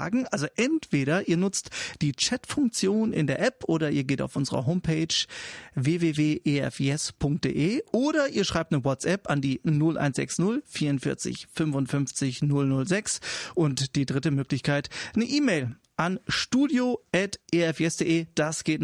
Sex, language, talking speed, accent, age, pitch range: male, English, 120 wpm, German, 40-59, 145-205 Hz